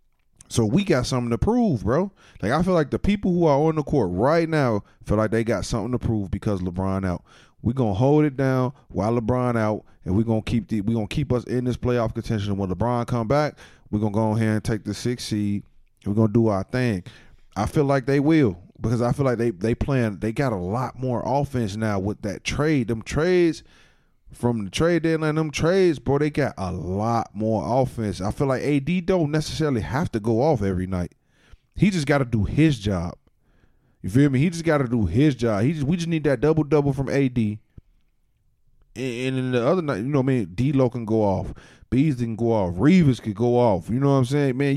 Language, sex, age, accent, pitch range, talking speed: English, male, 20-39, American, 110-145 Hz, 235 wpm